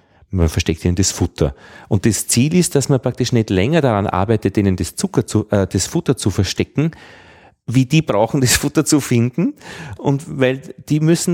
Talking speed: 190 wpm